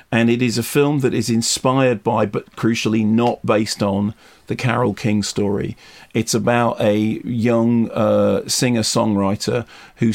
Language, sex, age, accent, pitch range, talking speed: English, male, 40-59, British, 105-120 Hz, 150 wpm